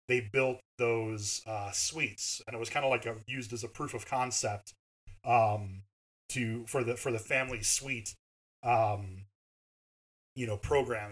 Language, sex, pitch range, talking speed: English, male, 105-130 Hz, 160 wpm